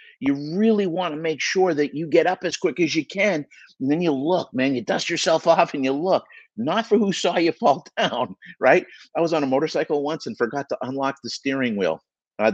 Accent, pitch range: American, 145-215 Hz